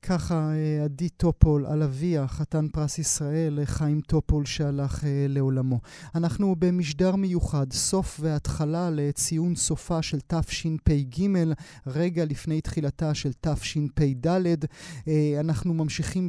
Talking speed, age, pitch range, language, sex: 105 wpm, 30-49, 150-180 Hz, Hebrew, male